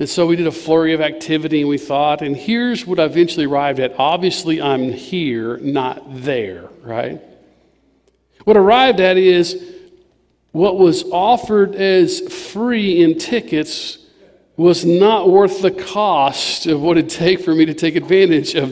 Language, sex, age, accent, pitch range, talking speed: English, male, 50-69, American, 145-200 Hz, 160 wpm